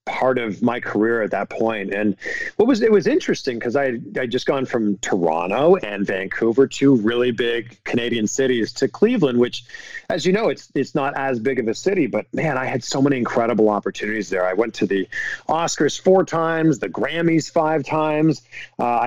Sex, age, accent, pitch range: male, 40-59, American, 120-150 Hz